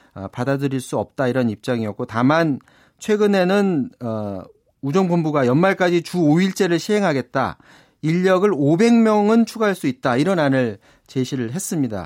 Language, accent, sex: Korean, native, male